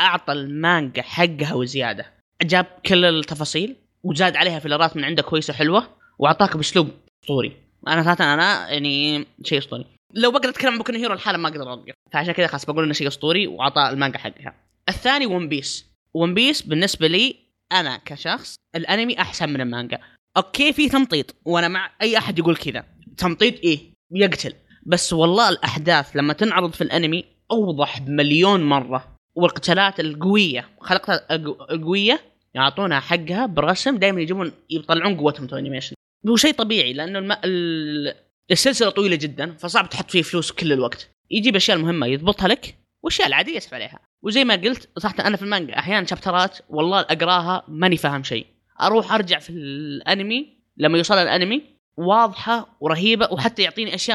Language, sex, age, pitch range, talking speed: Arabic, female, 20-39, 150-205 Hz, 155 wpm